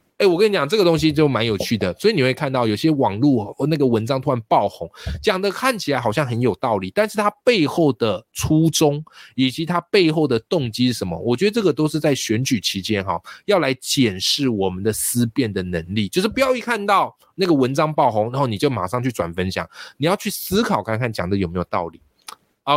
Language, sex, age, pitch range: Chinese, male, 20-39, 105-150 Hz